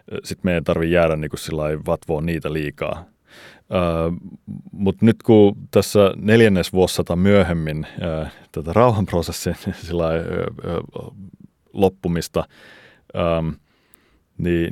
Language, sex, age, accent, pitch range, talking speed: Finnish, male, 30-49, native, 80-95 Hz, 100 wpm